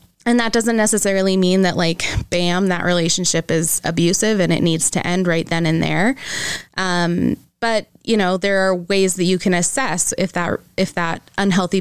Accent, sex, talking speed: American, female, 190 wpm